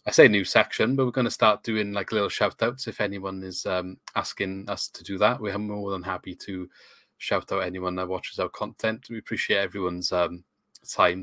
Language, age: English, 30-49